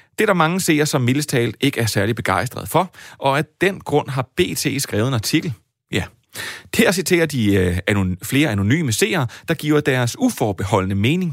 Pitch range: 110-155 Hz